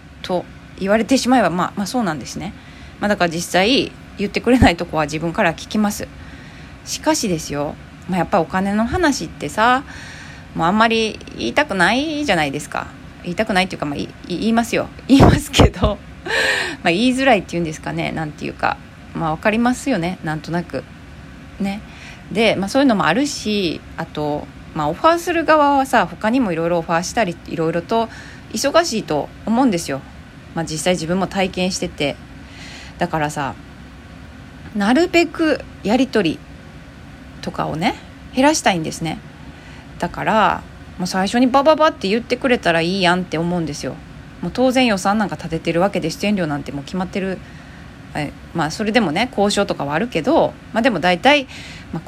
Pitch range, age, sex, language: 165-235 Hz, 20-39, female, Japanese